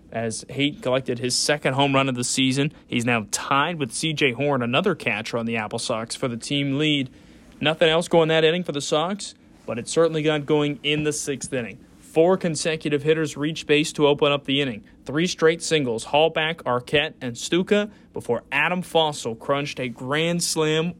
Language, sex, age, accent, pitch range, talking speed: English, male, 30-49, American, 135-165 Hz, 190 wpm